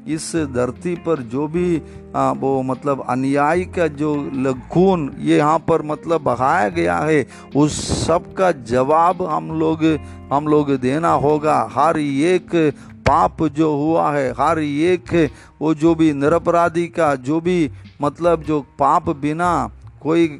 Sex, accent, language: male, native, Hindi